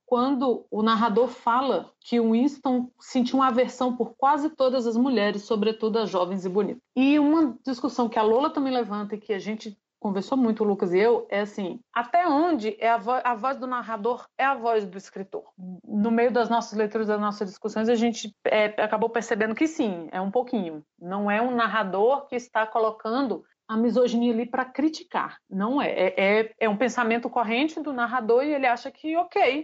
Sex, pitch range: female, 220-265 Hz